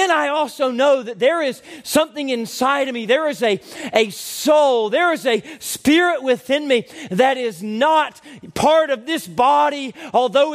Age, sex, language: 40-59, male, English